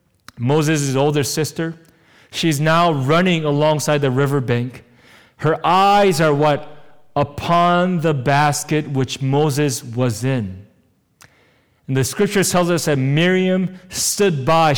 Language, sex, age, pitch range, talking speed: English, male, 40-59, 120-170 Hz, 120 wpm